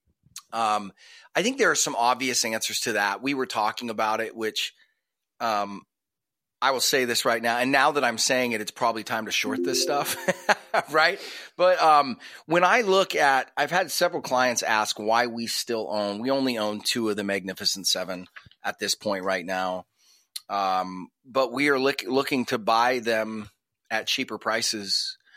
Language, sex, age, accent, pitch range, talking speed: English, male, 30-49, American, 105-135 Hz, 180 wpm